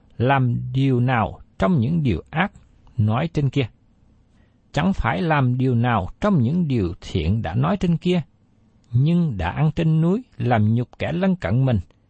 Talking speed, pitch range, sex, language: 170 wpm, 105-165 Hz, male, Vietnamese